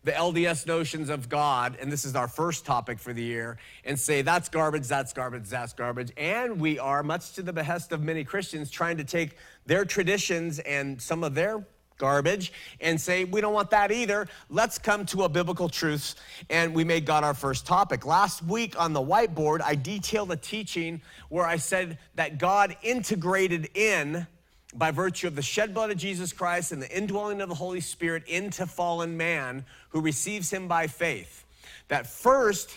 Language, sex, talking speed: German, male, 190 wpm